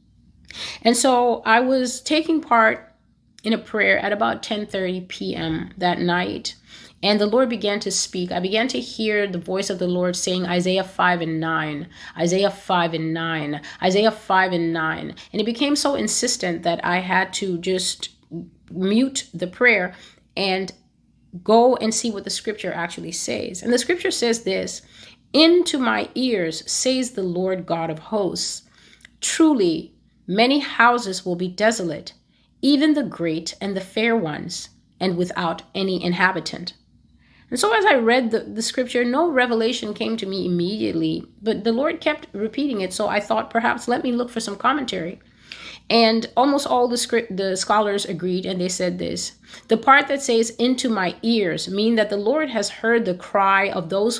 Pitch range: 180-240 Hz